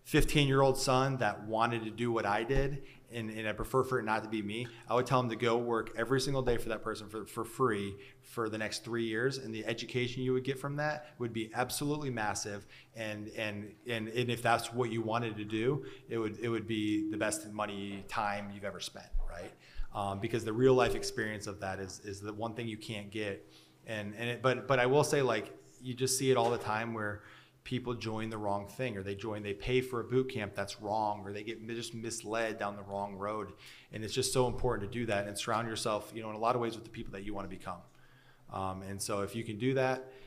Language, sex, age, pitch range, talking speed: English, male, 30-49, 105-130 Hz, 250 wpm